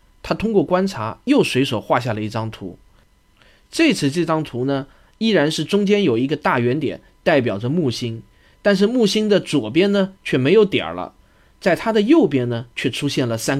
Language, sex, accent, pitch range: Chinese, male, native, 125-190 Hz